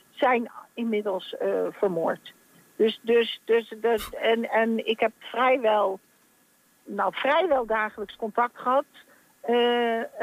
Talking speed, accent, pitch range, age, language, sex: 110 wpm, Dutch, 215-265 Hz, 60-79, Dutch, female